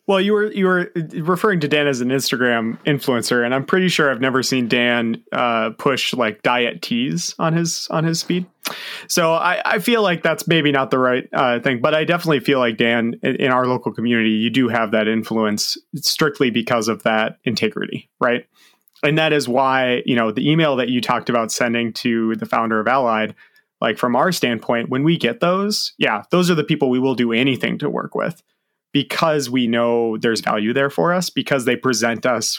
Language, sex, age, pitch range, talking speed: English, male, 30-49, 115-160 Hz, 210 wpm